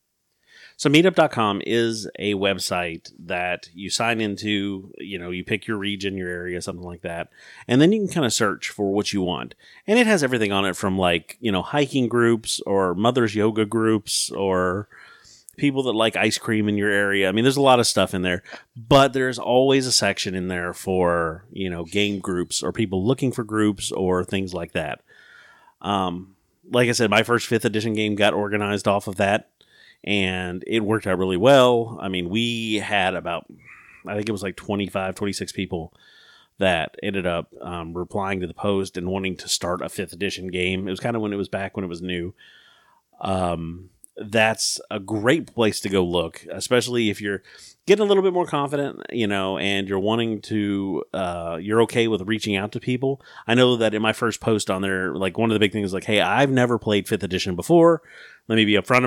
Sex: male